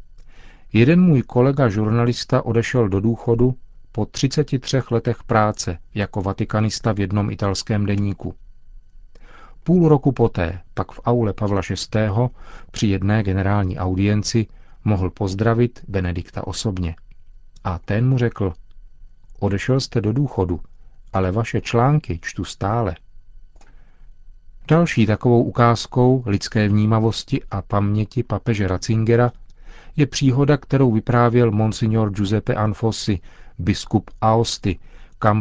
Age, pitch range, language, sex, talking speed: 40-59, 95-120 Hz, Czech, male, 110 wpm